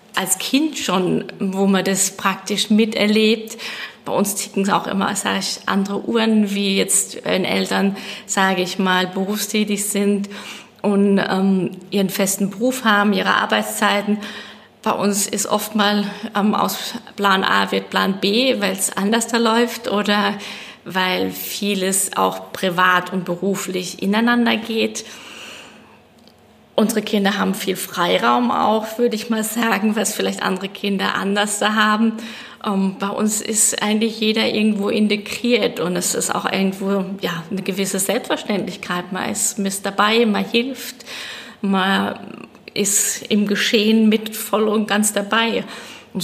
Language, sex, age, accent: German, female, 20-39, German